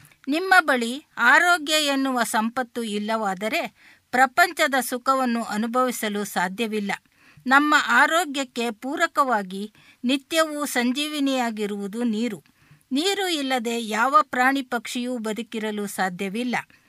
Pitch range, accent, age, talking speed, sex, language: 215-280 Hz, native, 50-69, 80 wpm, female, Kannada